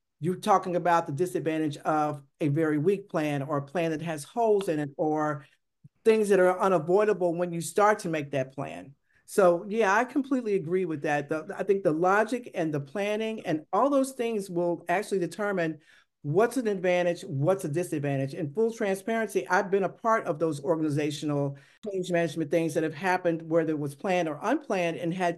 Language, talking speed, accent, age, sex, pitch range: English, 190 wpm, American, 50-69, male, 160-205 Hz